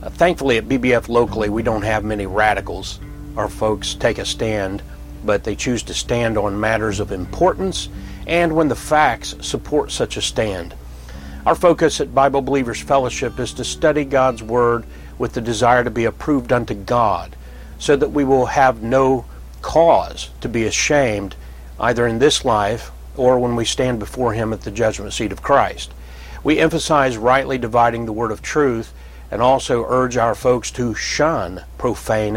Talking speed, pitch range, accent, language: 170 wpm, 100-135 Hz, American, English